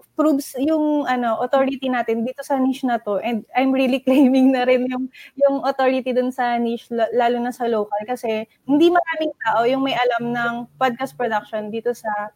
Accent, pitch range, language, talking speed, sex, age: Filipino, 225-265 Hz, English, 190 wpm, female, 20-39